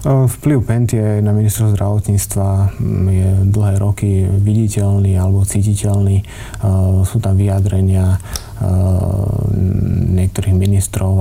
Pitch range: 100-105 Hz